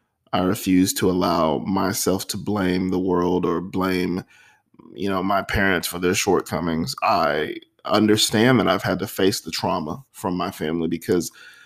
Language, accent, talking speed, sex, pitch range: English, American, 160 wpm, male, 95-120 Hz